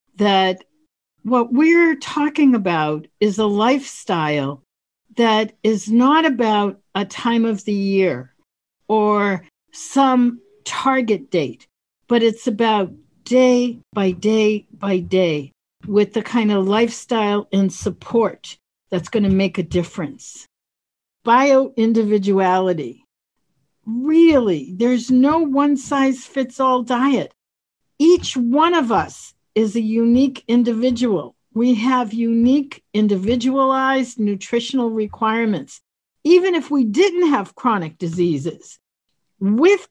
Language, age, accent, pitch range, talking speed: English, 60-79, American, 195-265 Hz, 110 wpm